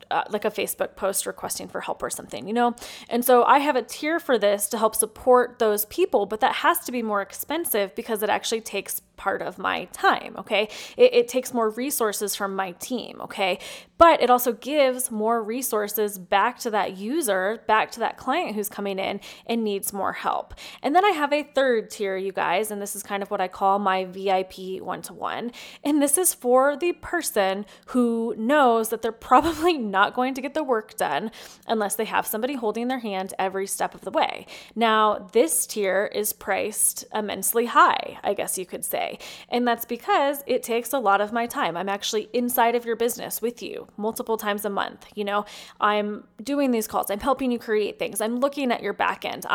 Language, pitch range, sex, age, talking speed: English, 205-255 Hz, female, 20-39, 210 wpm